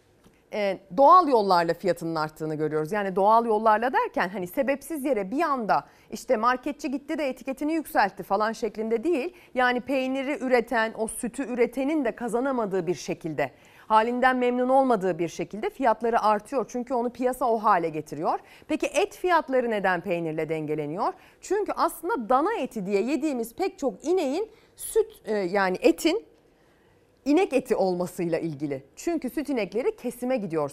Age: 40-59